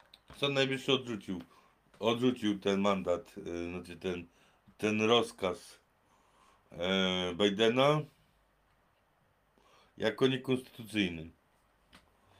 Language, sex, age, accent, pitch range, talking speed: Polish, male, 50-69, native, 100-130 Hz, 75 wpm